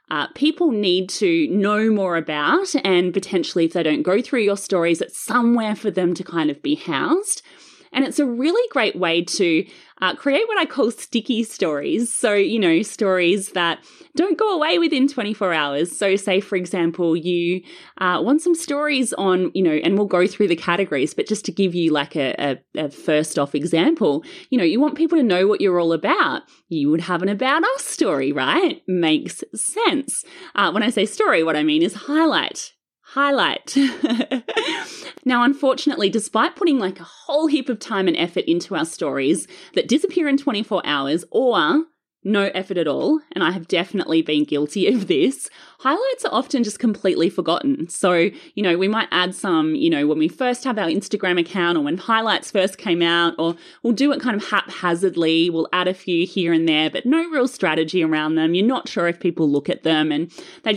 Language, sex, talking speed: English, female, 200 wpm